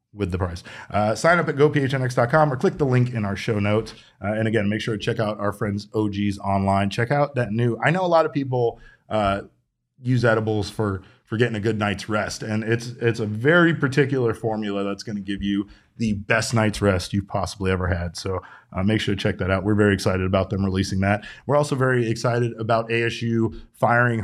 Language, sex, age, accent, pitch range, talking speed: English, male, 30-49, American, 105-135 Hz, 225 wpm